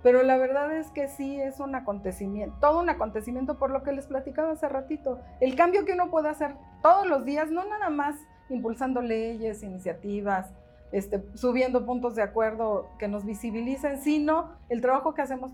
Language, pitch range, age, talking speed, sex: Spanish, 215-280 Hz, 40-59, 180 wpm, female